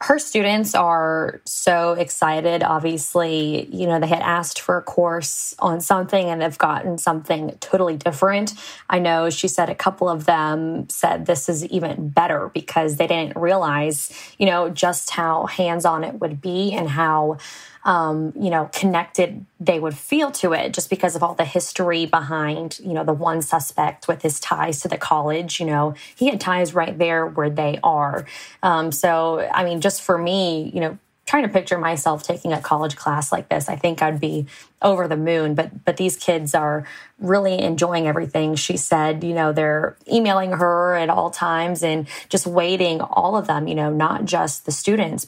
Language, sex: English, female